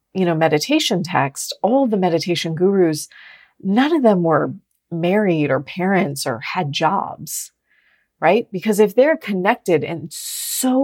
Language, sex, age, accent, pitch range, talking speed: English, female, 30-49, American, 170-225 Hz, 140 wpm